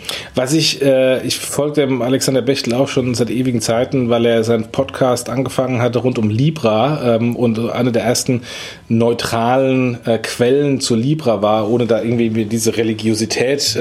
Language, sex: German, male